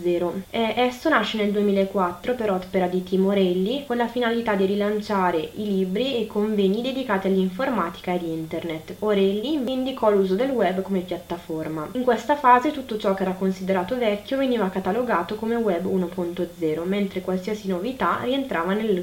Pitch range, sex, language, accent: 190-235 Hz, female, Italian, native